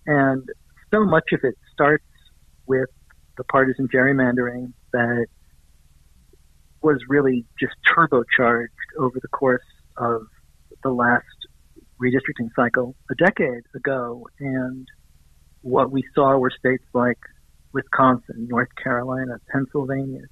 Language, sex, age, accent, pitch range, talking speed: English, male, 50-69, American, 115-155 Hz, 110 wpm